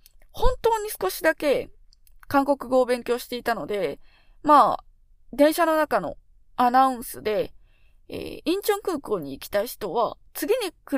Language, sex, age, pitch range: Japanese, female, 20-39, 245-335 Hz